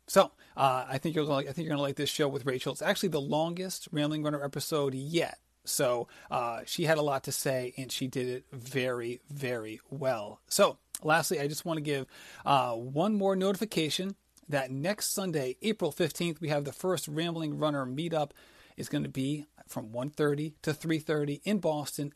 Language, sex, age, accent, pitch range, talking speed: English, male, 30-49, American, 140-175 Hz, 185 wpm